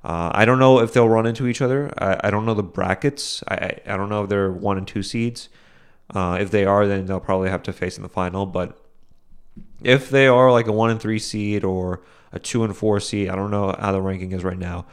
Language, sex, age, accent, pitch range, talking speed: English, male, 20-39, American, 95-115 Hz, 260 wpm